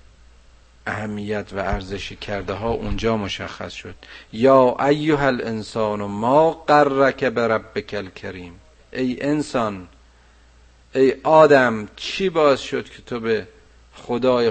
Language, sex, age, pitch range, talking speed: Persian, male, 50-69, 75-120 Hz, 115 wpm